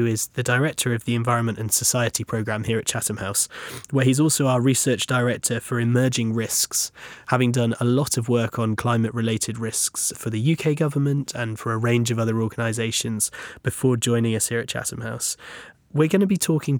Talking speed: 195 wpm